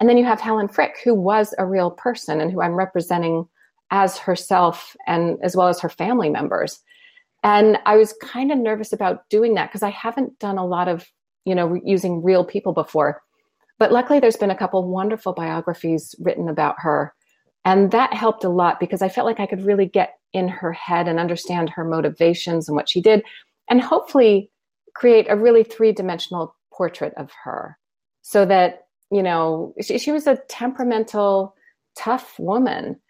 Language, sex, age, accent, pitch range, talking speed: English, female, 40-59, American, 175-220 Hz, 185 wpm